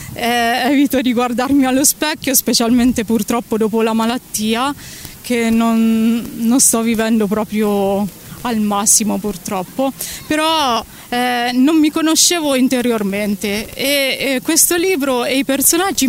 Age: 20-39